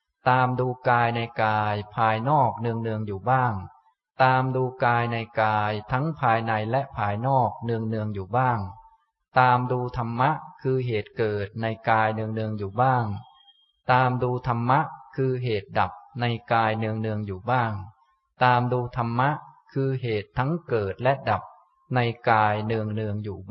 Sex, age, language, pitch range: male, 20-39, Thai, 105-130 Hz